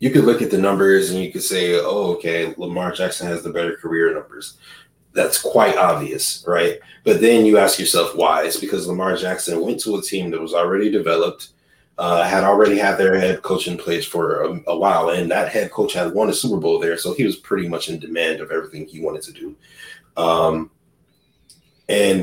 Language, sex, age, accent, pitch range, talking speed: English, male, 30-49, American, 85-110 Hz, 215 wpm